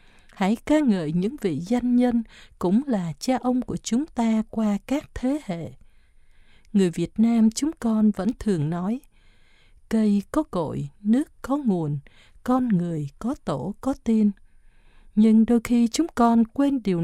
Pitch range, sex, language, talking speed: 180-245 Hz, female, Vietnamese, 160 wpm